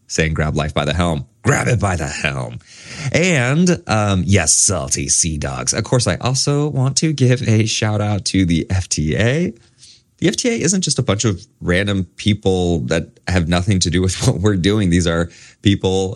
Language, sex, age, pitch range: English, male, 30-49, 85-125 Hz